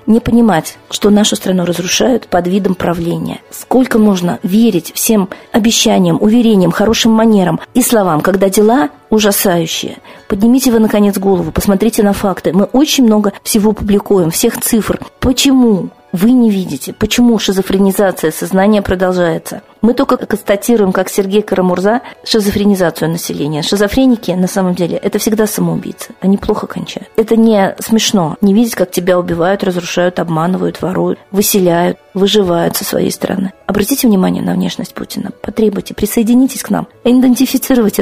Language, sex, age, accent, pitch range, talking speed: Russian, female, 40-59, native, 185-225 Hz, 140 wpm